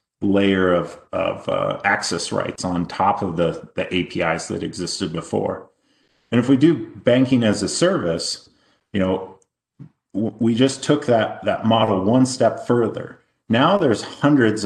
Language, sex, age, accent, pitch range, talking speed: English, male, 40-59, American, 95-110 Hz, 155 wpm